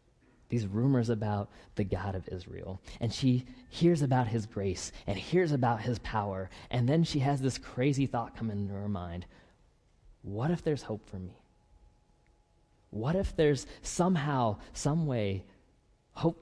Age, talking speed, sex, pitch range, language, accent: 20-39, 155 wpm, male, 100-150 Hz, English, American